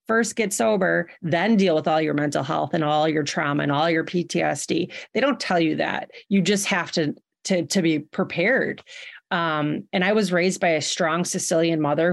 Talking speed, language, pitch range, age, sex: 205 wpm, English, 160-190 Hz, 30-49, female